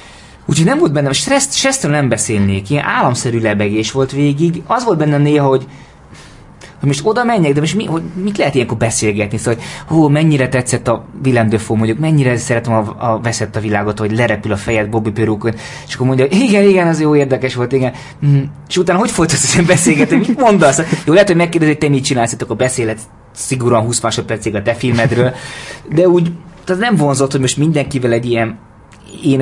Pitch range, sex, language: 110-150 Hz, male, Hungarian